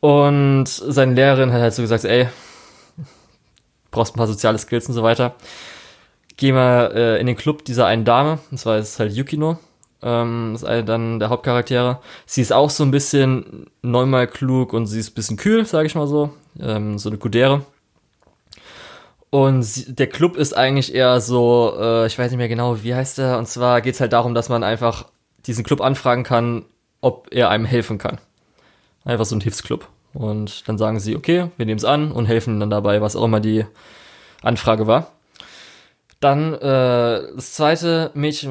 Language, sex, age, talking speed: German, male, 20-39, 190 wpm